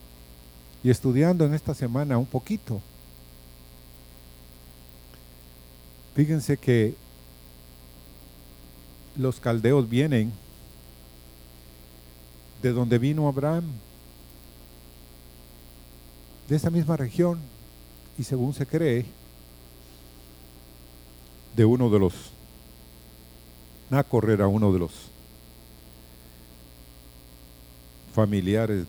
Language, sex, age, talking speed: Spanish, male, 50-69, 70 wpm